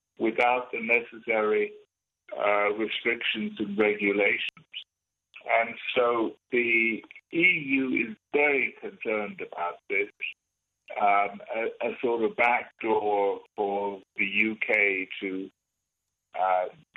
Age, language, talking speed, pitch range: 60-79, English, 95 wpm, 105-140 Hz